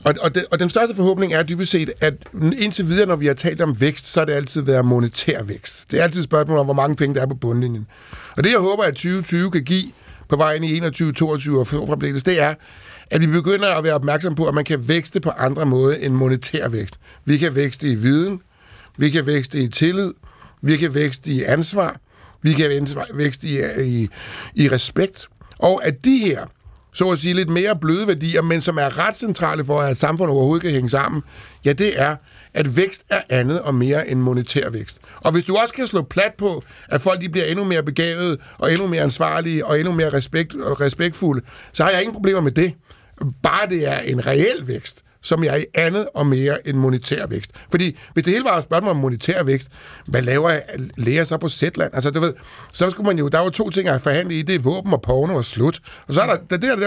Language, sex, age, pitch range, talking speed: Danish, male, 60-79, 140-175 Hz, 230 wpm